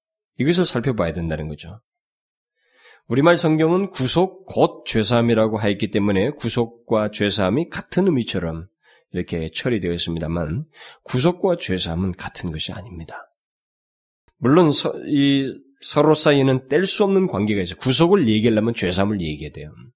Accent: native